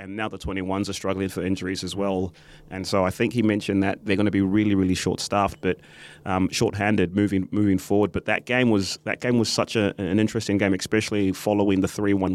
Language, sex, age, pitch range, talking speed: English, male, 30-49, 90-105 Hz, 230 wpm